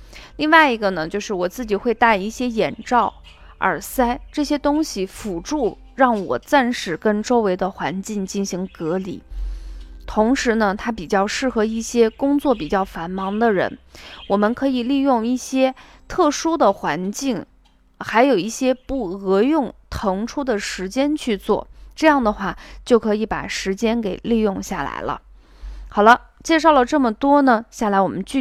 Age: 20-39